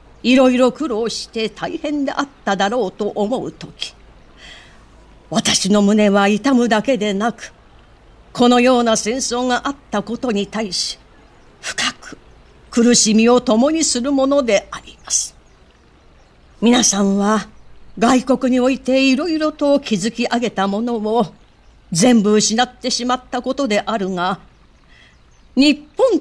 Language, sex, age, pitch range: Japanese, female, 50-69, 210-270 Hz